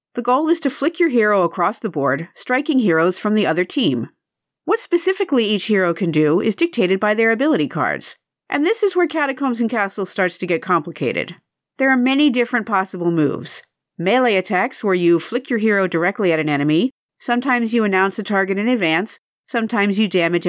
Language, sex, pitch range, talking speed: English, female, 180-260 Hz, 195 wpm